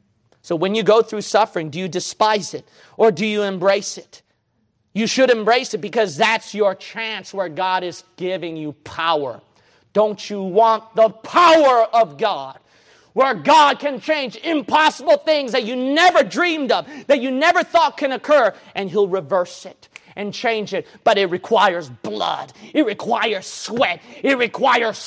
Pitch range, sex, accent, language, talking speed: 180-260 Hz, male, American, English, 165 wpm